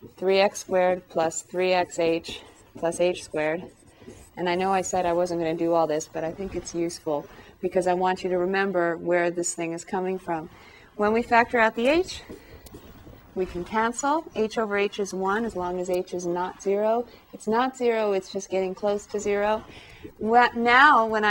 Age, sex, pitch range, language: 30-49, female, 175-210 Hz, English